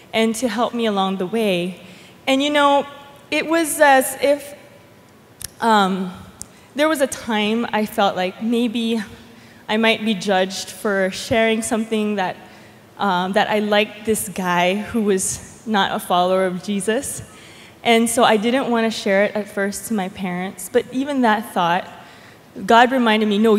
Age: 20-39